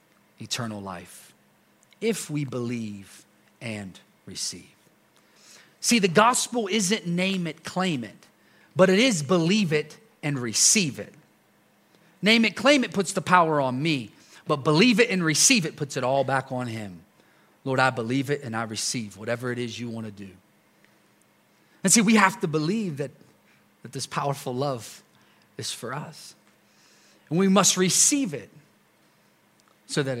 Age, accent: 40-59, American